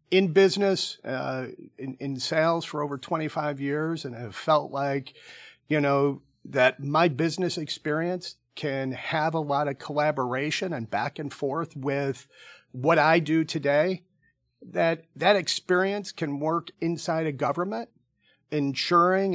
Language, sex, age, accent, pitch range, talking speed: English, male, 50-69, American, 140-175 Hz, 135 wpm